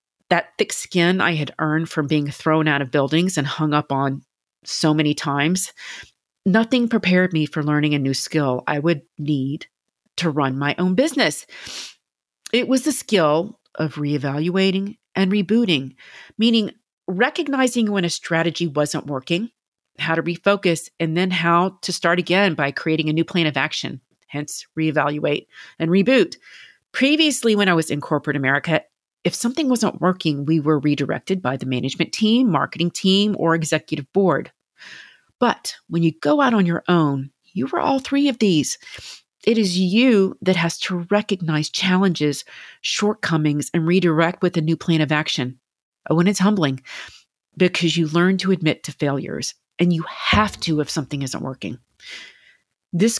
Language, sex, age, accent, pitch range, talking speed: English, female, 40-59, American, 150-200 Hz, 160 wpm